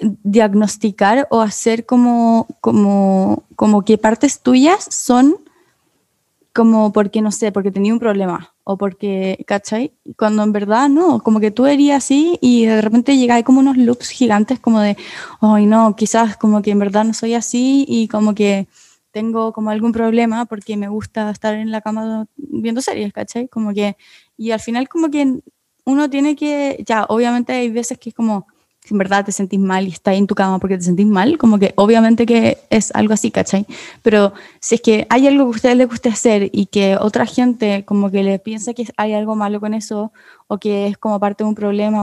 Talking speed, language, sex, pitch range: 205 wpm, Spanish, female, 210-250 Hz